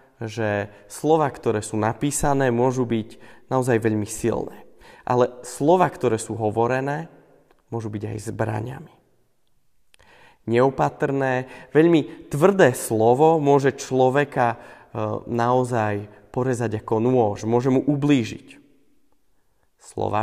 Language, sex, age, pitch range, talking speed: Slovak, male, 20-39, 110-140 Hz, 100 wpm